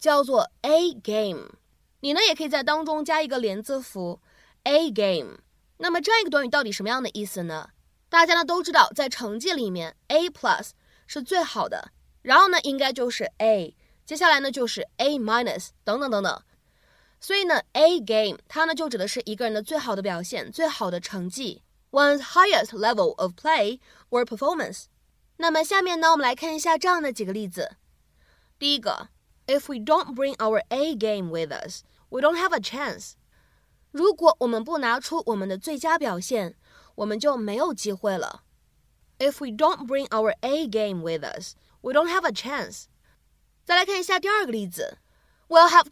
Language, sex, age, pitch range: Chinese, female, 20-39, 220-320 Hz